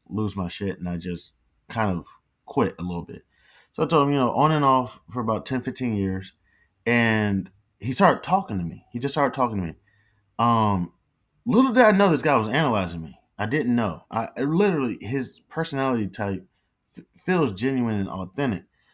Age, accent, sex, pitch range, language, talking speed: 20-39, American, male, 90-125 Hz, English, 195 wpm